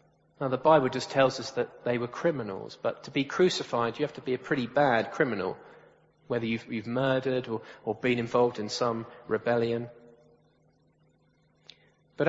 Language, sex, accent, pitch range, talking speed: English, male, British, 115-145 Hz, 165 wpm